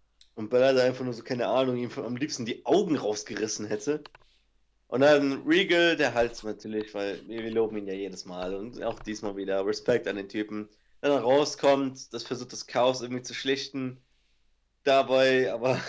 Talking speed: 190 wpm